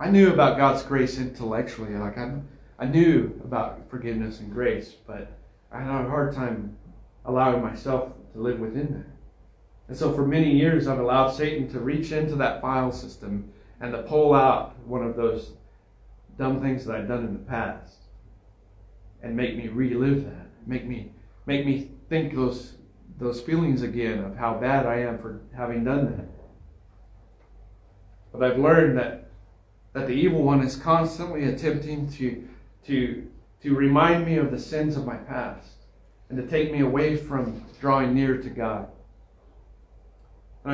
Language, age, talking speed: English, 40-59, 165 wpm